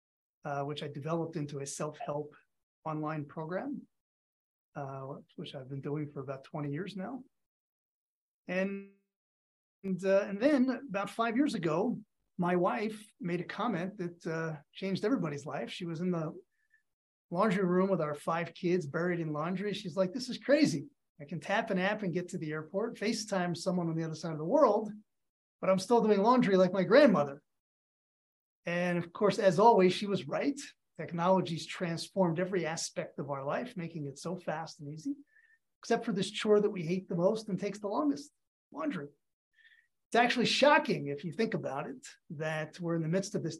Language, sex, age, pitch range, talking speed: English, male, 30-49, 160-205 Hz, 185 wpm